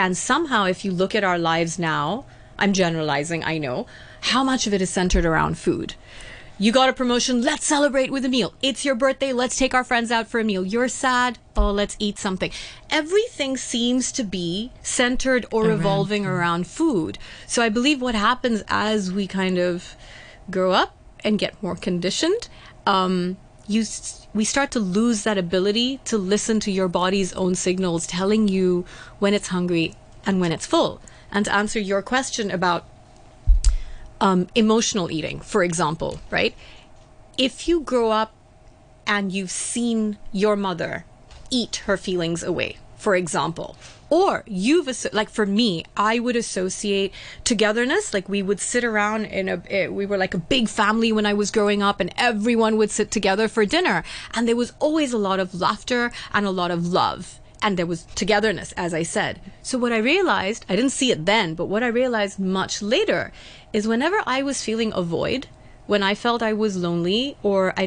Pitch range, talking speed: 185-235 Hz, 180 wpm